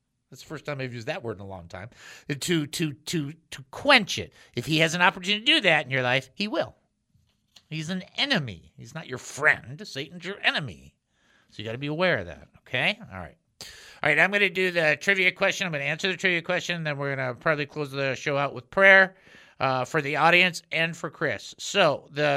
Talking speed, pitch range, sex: 235 wpm, 125-165 Hz, male